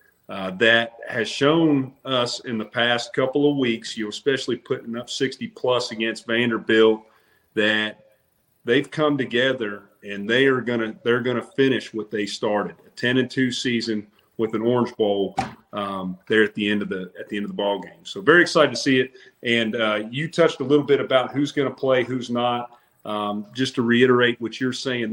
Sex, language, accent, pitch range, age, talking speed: male, English, American, 110-130 Hz, 40-59, 200 wpm